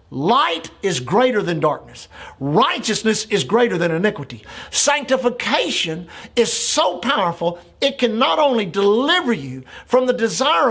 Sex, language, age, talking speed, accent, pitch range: male, English, 50-69, 130 wpm, American, 195-270 Hz